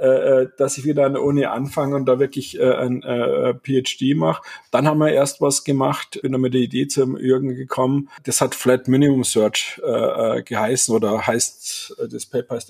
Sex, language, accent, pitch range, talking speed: male, English, German, 125-145 Hz, 195 wpm